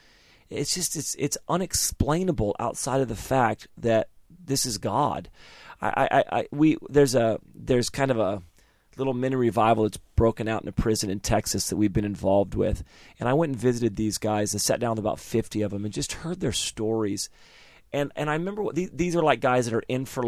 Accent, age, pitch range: American, 40-59, 105-135 Hz